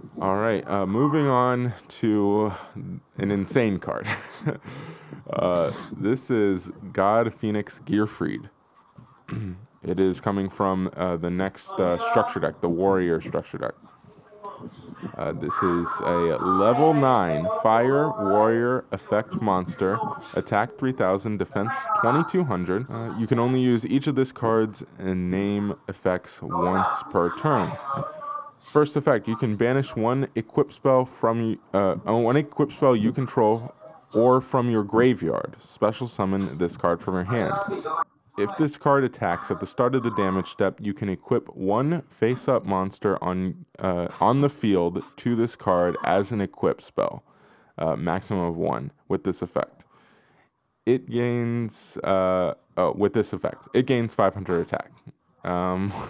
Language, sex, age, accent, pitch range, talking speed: English, male, 20-39, American, 95-130 Hz, 140 wpm